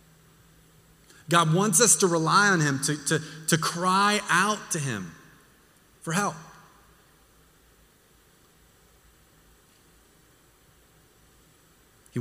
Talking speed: 80 wpm